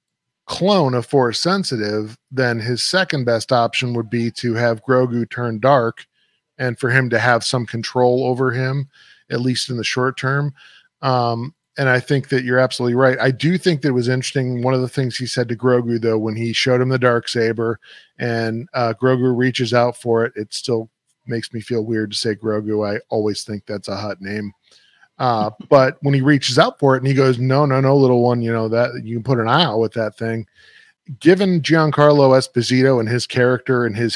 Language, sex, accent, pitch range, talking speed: English, male, American, 115-135 Hz, 215 wpm